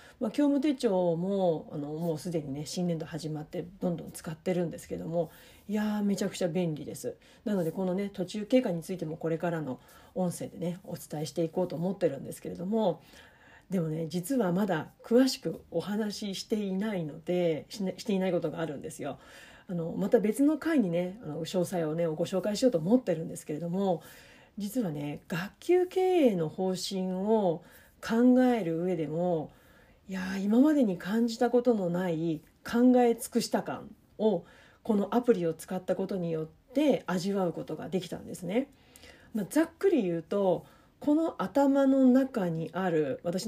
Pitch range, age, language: 170-240 Hz, 40-59, Japanese